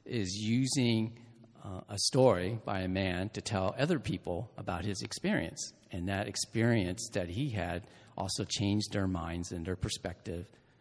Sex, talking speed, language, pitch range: male, 155 wpm, English, 95-120 Hz